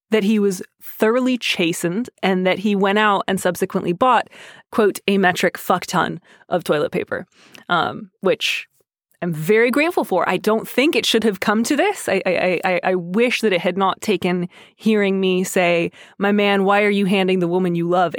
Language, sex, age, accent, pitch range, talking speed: English, female, 20-39, American, 175-220 Hz, 195 wpm